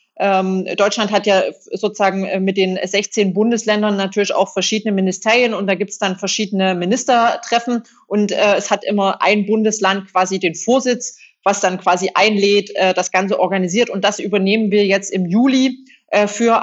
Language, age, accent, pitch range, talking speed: Polish, 30-49, German, 195-220 Hz, 155 wpm